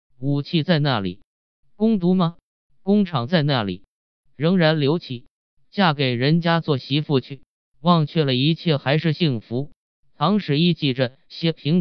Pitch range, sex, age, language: 130-160 Hz, male, 20-39, Chinese